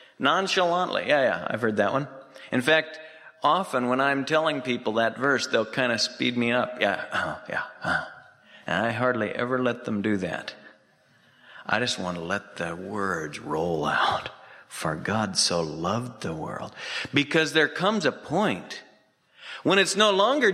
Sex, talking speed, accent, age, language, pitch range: male, 165 wpm, American, 50-69, English, 115-190 Hz